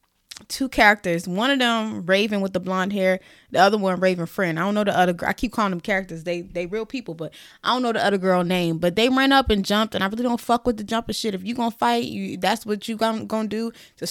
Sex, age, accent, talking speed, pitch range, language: female, 20-39, American, 275 wpm, 185-235 Hz, English